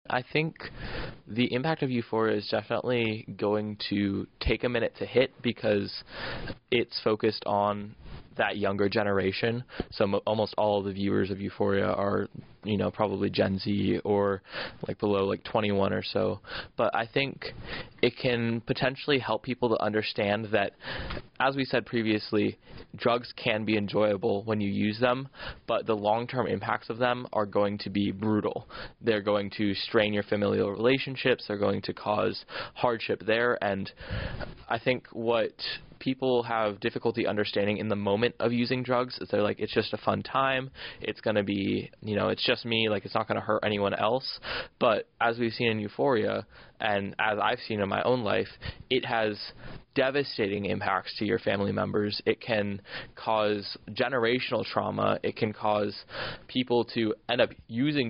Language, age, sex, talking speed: English, 20-39, male, 175 wpm